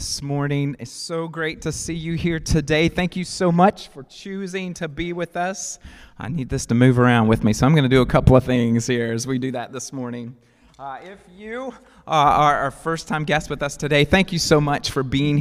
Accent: American